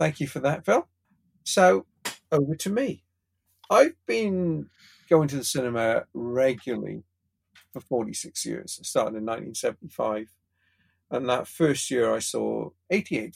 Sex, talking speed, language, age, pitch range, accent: male, 135 wpm, English, 50-69, 110-160 Hz, British